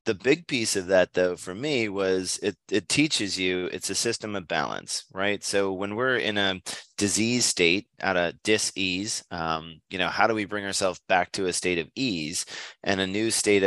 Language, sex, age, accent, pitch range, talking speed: English, male, 30-49, American, 90-105 Hz, 205 wpm